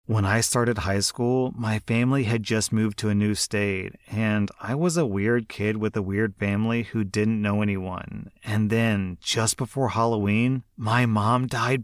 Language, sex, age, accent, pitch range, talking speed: English, male, 30-49, American, 105-120 Hz, 180 wpm